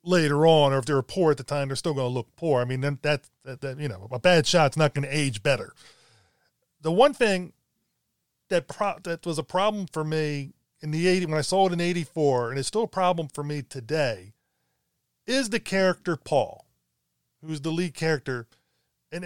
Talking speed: 215 wpm